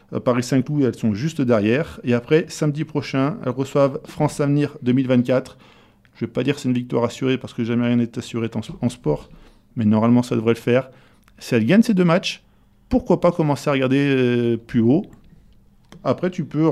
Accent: French